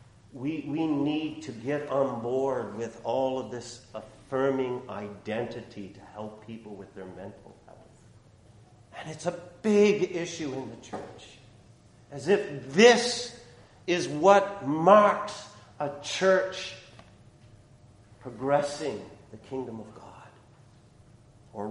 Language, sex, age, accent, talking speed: English, male, 50-69, American, 115 wpm